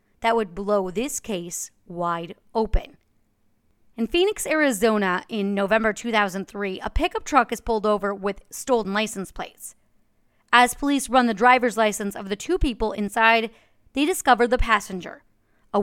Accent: American